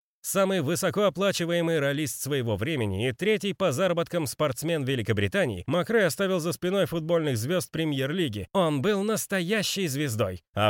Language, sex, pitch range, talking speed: Russian, male, 120-185 Hz, 130 wpm